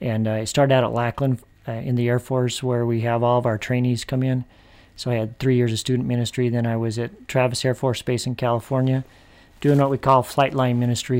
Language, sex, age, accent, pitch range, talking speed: English, male, 40-59, American, 115-130 Hz, 245 wpm